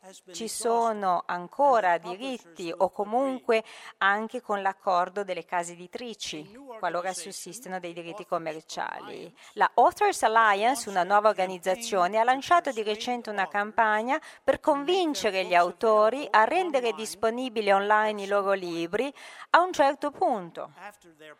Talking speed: 125 wpm